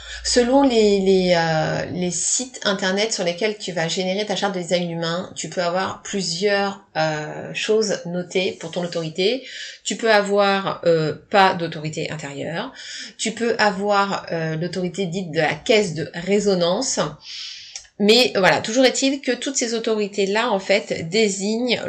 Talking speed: 155 wpm